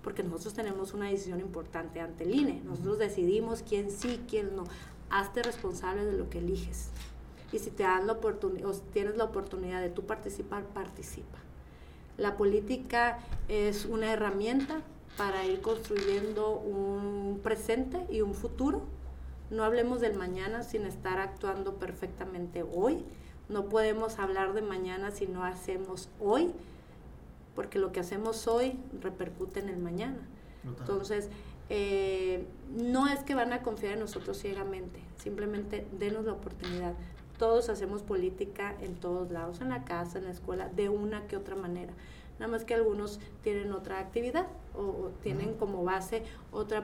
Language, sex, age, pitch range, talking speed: Spanish, female, 40-59, 185-220 Hz, 150 wpm